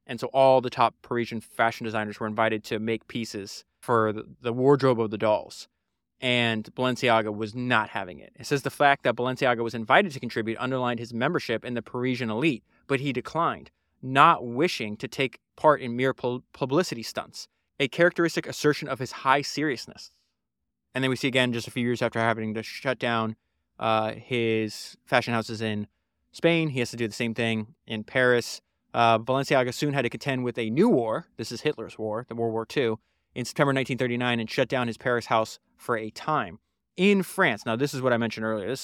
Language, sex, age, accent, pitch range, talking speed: English, male, 20-39, American, 115-145 Hz, 200 wpm